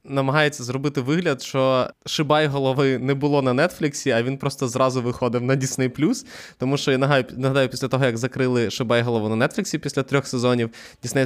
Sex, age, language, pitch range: male, 20-39, Ukrainian, 120-140 Hz